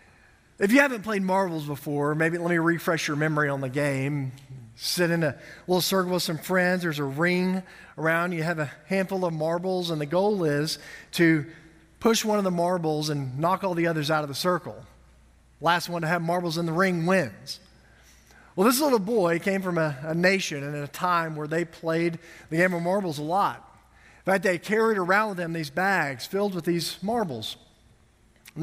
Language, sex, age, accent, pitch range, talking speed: English, male, 40-59, American, 155-190 Hz, 205 wpm